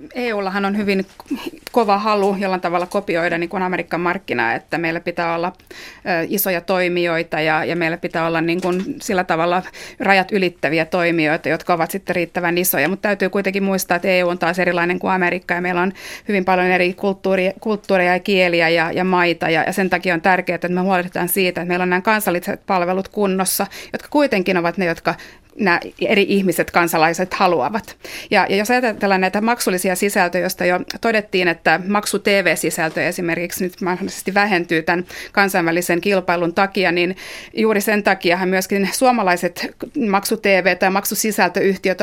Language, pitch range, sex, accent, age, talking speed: Finnish, 175-205 Hz, female, native, 30-49, 165 wpm